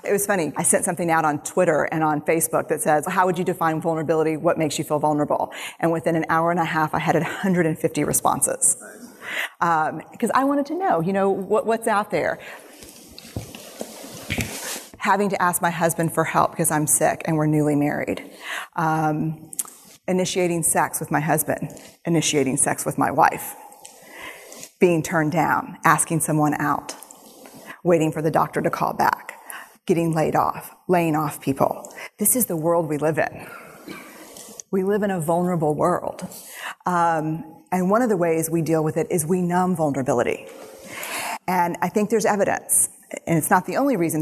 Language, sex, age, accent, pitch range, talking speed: English, female, 40-59, American, 155-185 Hz, 175 wpm